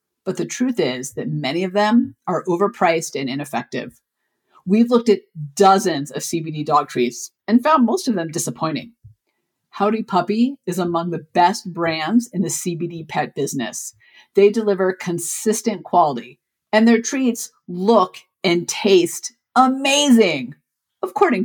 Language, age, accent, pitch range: English, 50-69, American, 165-220 Hz